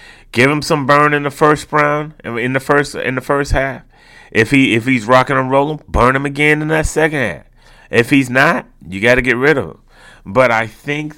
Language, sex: English, male